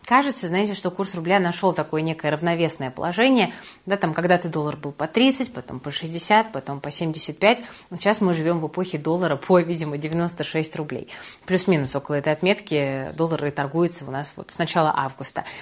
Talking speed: 175 wpm